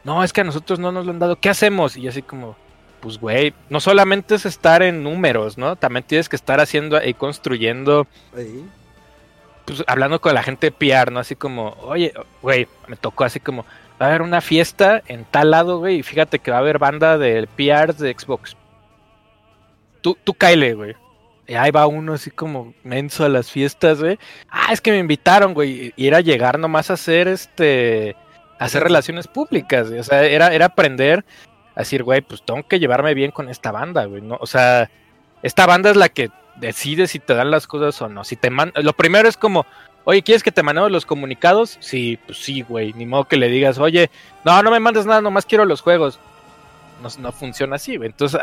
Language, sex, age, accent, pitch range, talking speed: Spanish, male, 20-39, Mexican, 130-175 Hz, 215 wpm